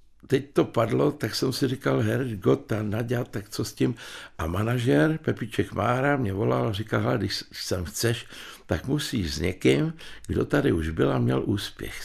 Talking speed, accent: 185 wpm, native